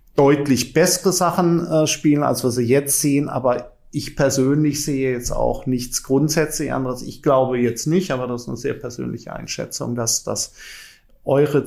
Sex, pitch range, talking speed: male, 125-140 Hz, 170 wpm